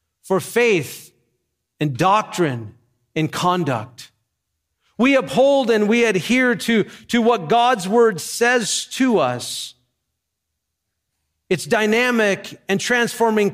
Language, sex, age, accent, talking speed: English, male, 40-59, American, 100 wpm